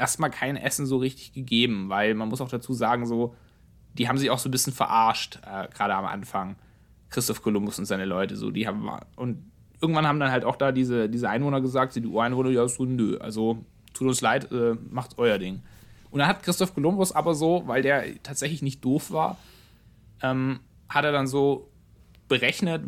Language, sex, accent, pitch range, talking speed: German, male, German, 115-150 Hz, 200 wpm